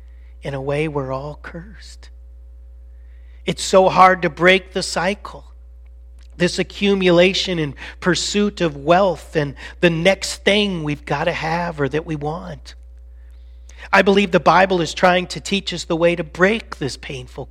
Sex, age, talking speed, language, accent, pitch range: male, 40-59, 160 wpm, English, American, 130-195 Hz